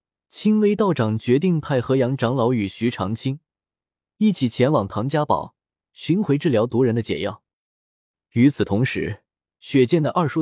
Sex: male